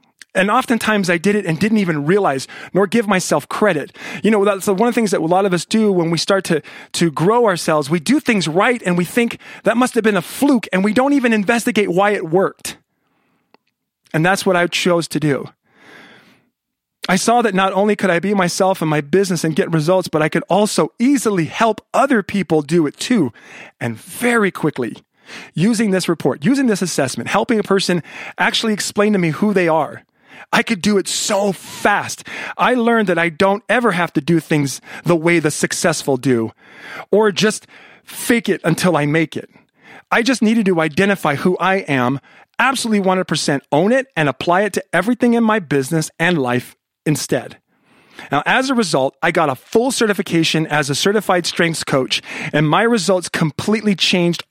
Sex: male